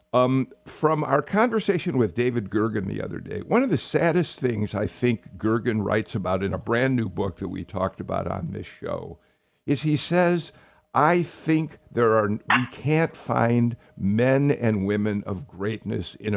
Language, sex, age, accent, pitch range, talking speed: English, male, 60-79, American, 105-150 Hz, 175 wpm